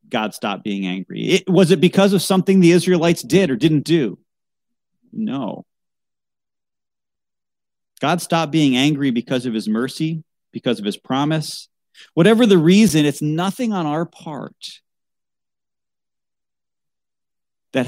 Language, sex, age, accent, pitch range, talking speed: English, male, 40-59, American, 125-180 Hz, 125 wpm